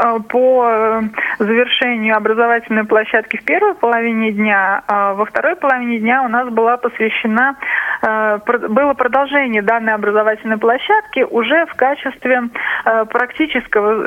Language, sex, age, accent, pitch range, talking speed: Russian, female, 20-39, native, 215-255 Hz, 110 wpm